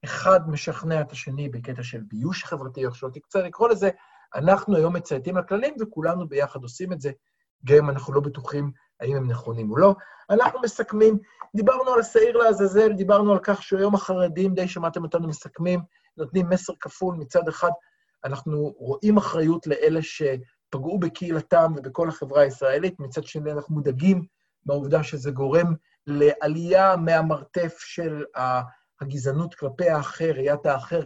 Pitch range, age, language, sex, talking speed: 145-185 Hz, 50-69, Hebrew, male, 150 wpm